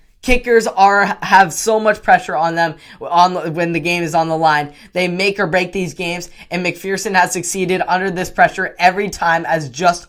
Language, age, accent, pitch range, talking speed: English, 10-29, American, 150-180 Hz, 195 wpm